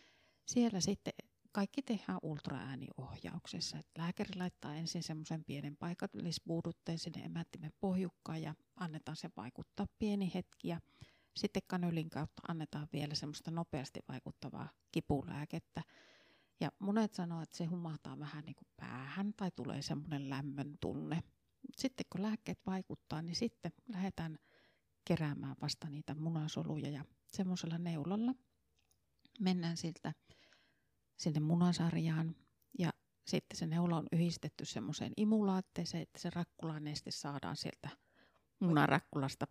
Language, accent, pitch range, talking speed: Finnish, native, 150-185 Hz, 115 wpm